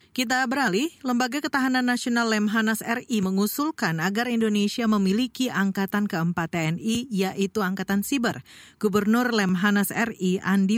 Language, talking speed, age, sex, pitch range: Indonesian, 115 wpm, 40-59, female, 180-230 Hz